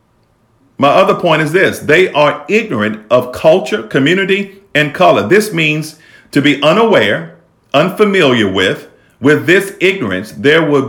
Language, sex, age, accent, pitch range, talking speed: English, male, 50-69, American, 115-150 Hz, 140 wpm